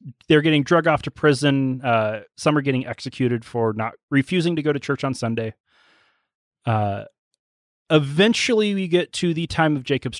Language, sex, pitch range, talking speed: English, male, 120-165 Hz, 170 wpm